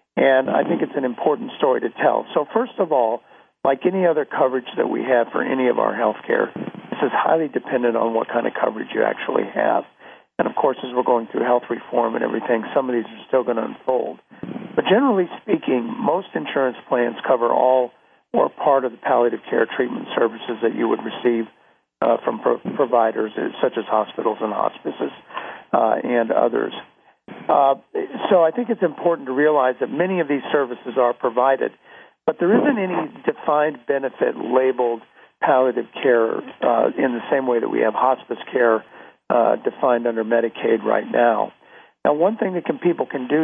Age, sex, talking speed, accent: 50-69, male, 190 wpm, American